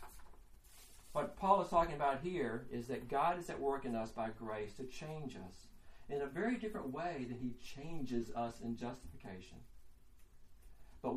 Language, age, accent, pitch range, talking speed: English, 50-69, American, 95-140 Hz, 165 wpm